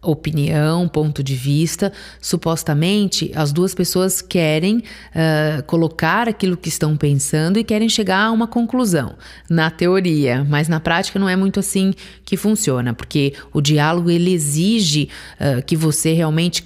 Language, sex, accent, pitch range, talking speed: Portuguese, female, Brazilian, 155-195 Hz, 140 wpm